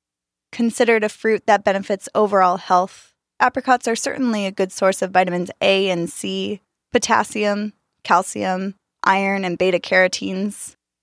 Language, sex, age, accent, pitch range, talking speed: English, female, 20-39, American, 180-225 Hz, 125 wpm